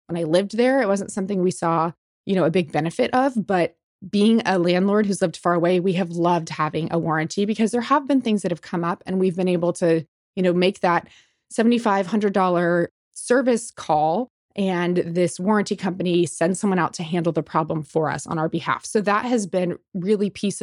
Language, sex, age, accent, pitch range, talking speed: English, female, 20-39, American, 175-220 Hz, 210 wpm